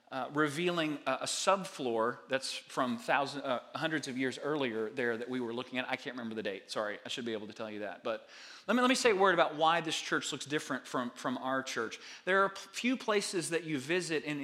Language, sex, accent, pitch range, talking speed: English, male, American, 130-175 Hz, 250 wpm